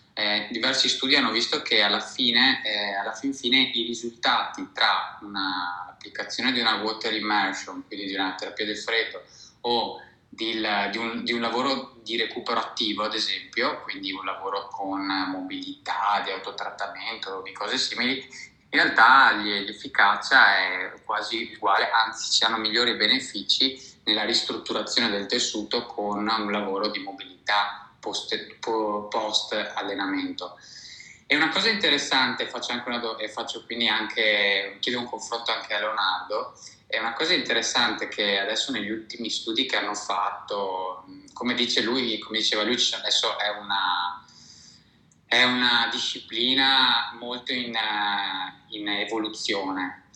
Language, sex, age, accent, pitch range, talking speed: Italian, male, 20-39, native, 105-125 Hz, 140 wpm